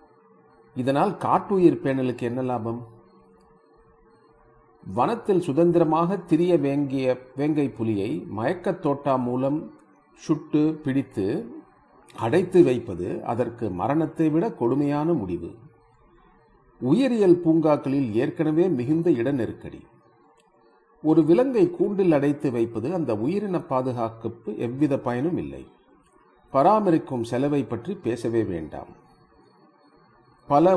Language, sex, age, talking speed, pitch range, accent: Tamil, male, 50-69, 85 wpm, 120-160 Hz, native